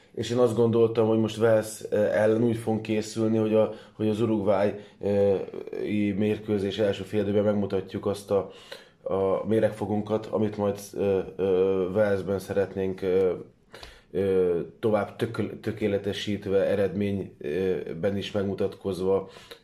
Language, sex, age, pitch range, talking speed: Hungarian, male, 20-39, 100-115 Hz, 100 wpm